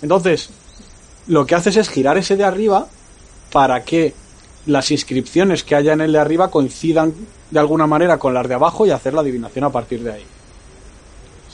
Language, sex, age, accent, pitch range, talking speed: Spanish, male, 30-49, Spanish, 115-155 Hz, 185 wpm